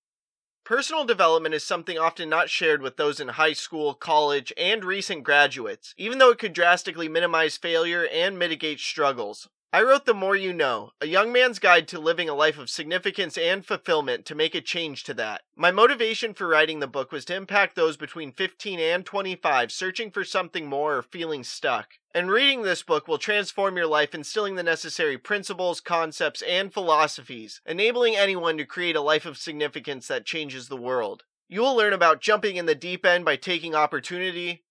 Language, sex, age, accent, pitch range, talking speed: English, male, 30-49, American, 150-195 Hz, 190 wpm